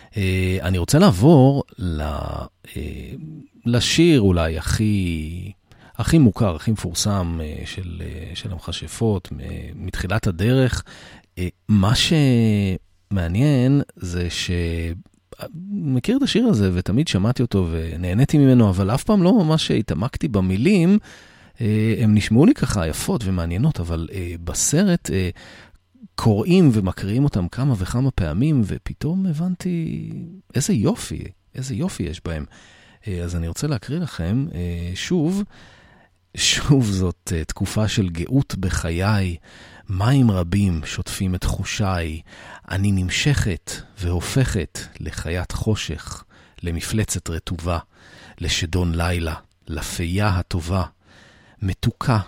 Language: Hebrew